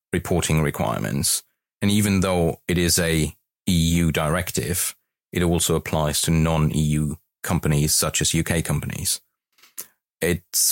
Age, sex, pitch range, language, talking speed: 30-49, male, 80-90 Hz, English, 125 wpm